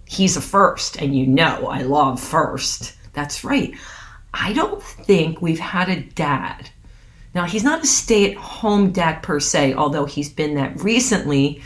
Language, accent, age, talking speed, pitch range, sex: English, American, 40-59, 160 wpm, 140-200 Hz, female